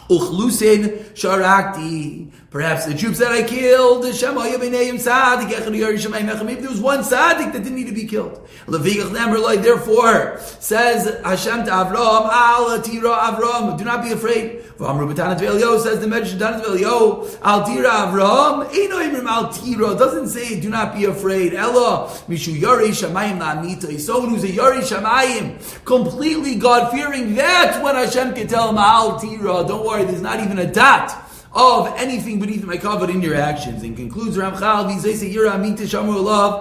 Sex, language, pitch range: male, English, 195-240 Hz